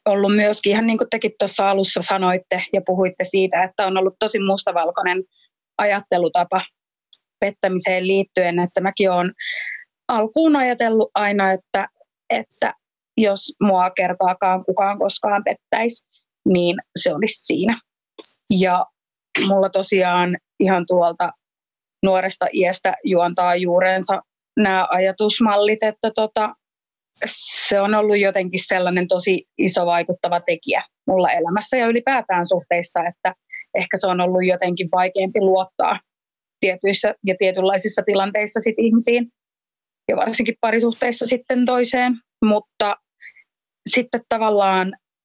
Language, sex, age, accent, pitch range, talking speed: Finnish, female, 30-49, native, 185-215 Hz, 115 wpm